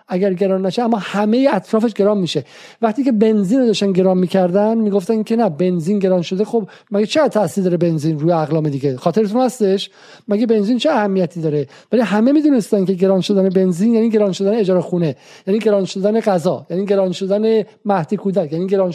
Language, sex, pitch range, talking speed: Persian, male, 180-225 Hz, 185 wpm